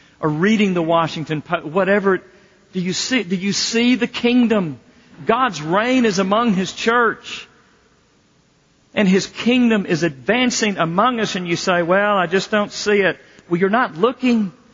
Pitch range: 180-225 Hz